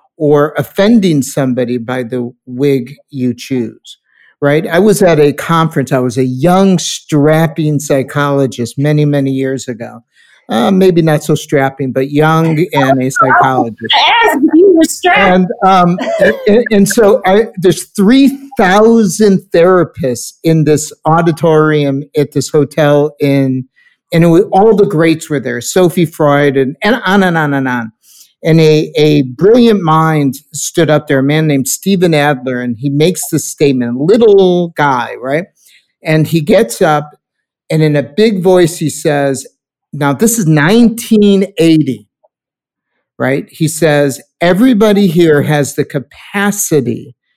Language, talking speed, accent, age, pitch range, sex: English, 140 wpm, American, 50-69, 145-185 Hz, male